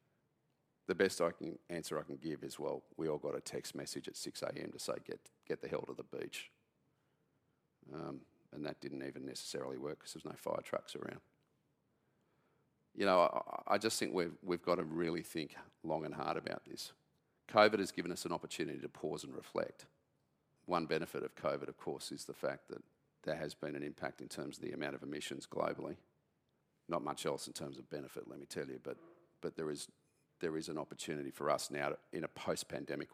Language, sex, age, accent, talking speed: English, male, 40-59, Australian, 210 wpm